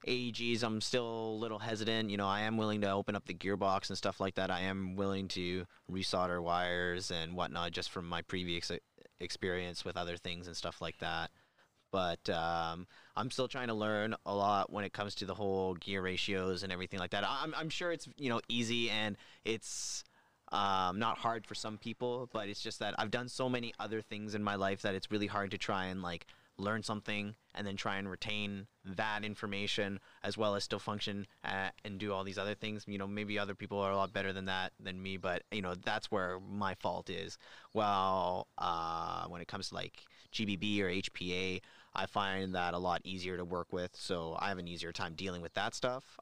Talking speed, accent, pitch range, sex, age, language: 215 wpm, American, 90-110 Hz, male, 30-49, English